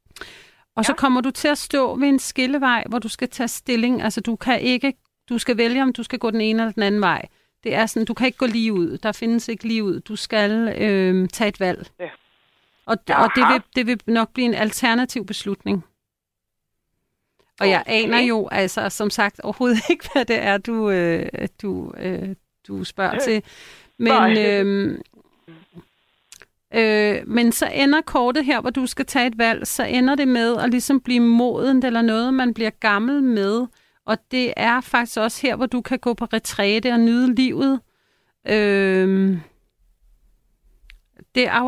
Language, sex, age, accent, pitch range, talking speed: Danish, female, 40-59, native, 210-250 Hz, 180 wpm